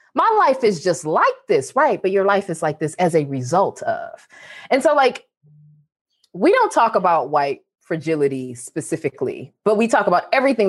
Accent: American